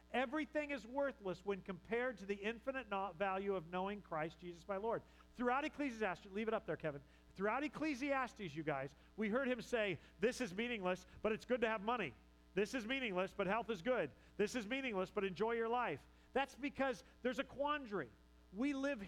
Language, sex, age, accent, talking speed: English, male, 40-59, American, 190 wpm